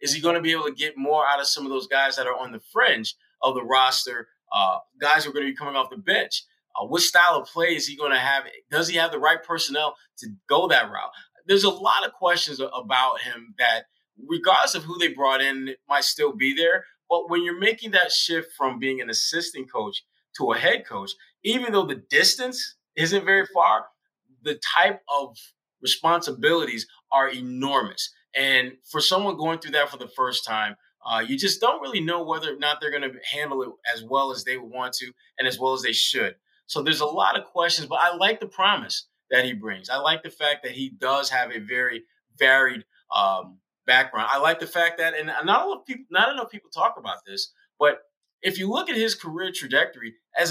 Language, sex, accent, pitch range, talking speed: English, male, American, 135-195 Hz, 220 wpm